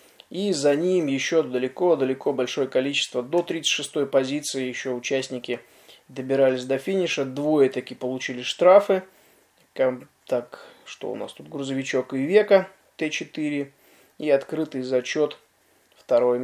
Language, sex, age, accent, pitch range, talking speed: Russian, male, 20-39, native, 130-155 Hz, 115 wpm